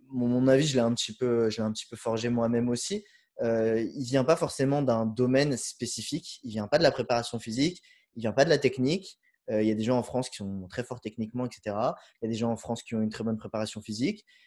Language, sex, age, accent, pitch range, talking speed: French, male, 20-39, French, 115-155 Hz, 280 wpm